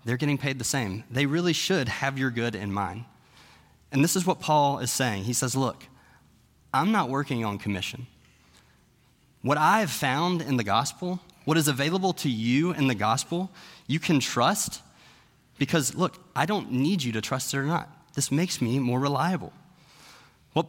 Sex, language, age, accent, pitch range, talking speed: male, English, 20-39, American, 110-150 Hz, 185 wpm